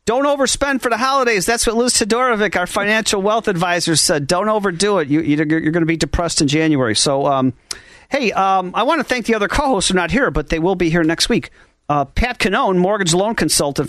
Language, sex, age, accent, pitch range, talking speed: English, male, 40-59, American, 155-210 Hz, 230 wpm